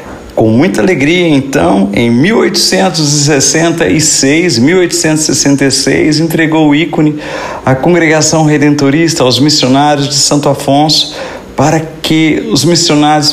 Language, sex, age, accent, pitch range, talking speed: Portuguese, male, 50-69, Brazilian, 115-155 Hz, 100 wpm